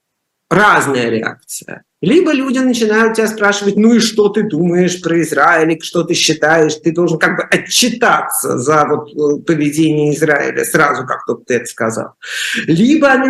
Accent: native